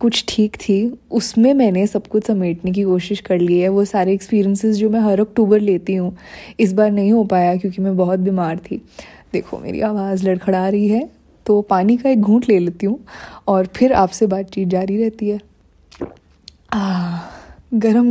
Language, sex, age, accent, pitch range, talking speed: Hindi, female, 20-39, native, 190-230 Hz, 180 wpm